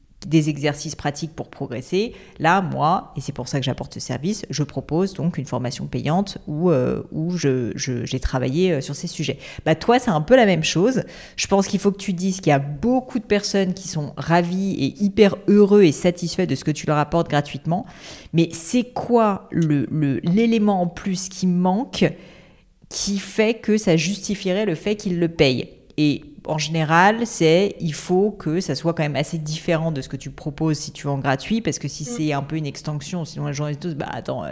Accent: French